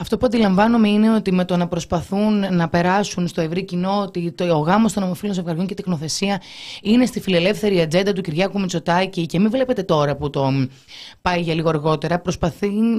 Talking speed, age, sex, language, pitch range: 185 wpm, 20-39, female, Greek, 170-210 Hz